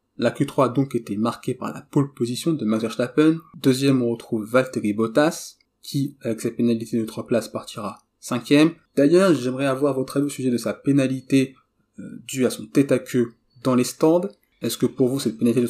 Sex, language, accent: male, French, French